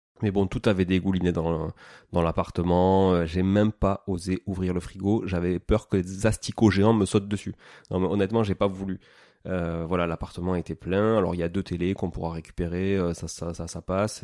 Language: French